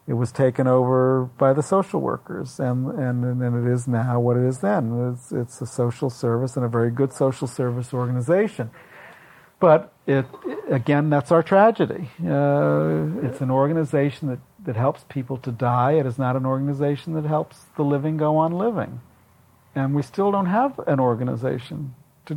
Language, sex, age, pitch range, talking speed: English, male, 50-69, 120-145 Hz, 175 wpm